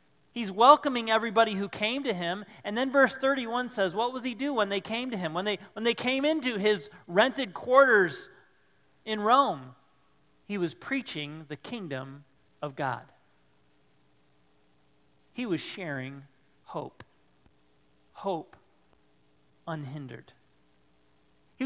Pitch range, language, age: 160-255 Hz, English, 40-59